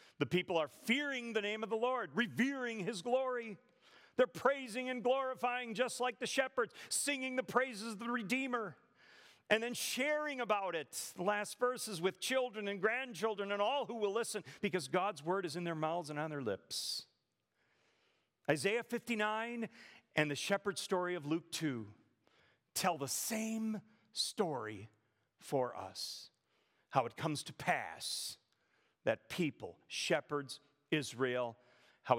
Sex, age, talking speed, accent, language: male, 40-59, 145 wpm, American, English